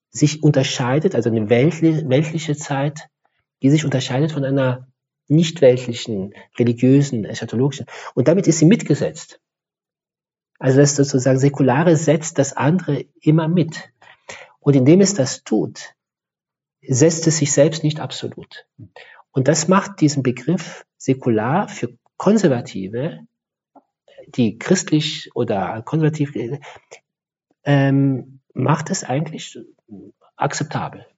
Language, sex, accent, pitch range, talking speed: German, male, German, 130-160 Hz, 110 wpm